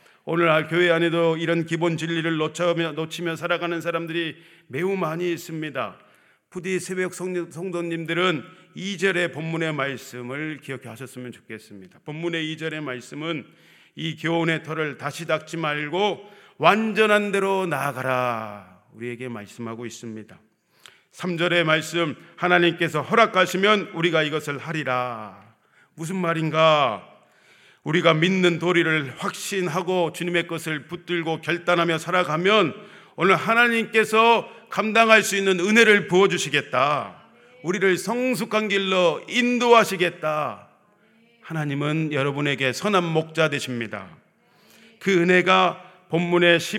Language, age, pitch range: Korean, 40-59, 155-185 Hz